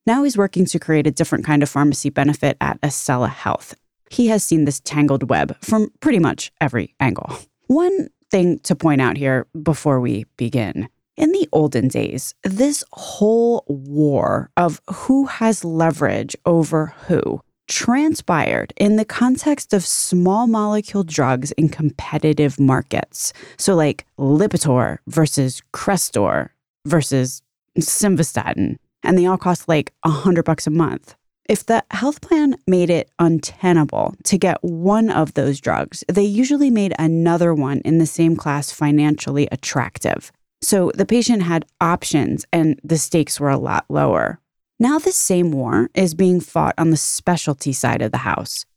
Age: 20-39